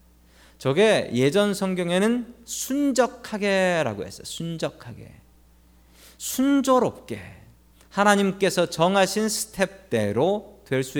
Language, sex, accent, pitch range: Korean, male, native, 130-200 Hz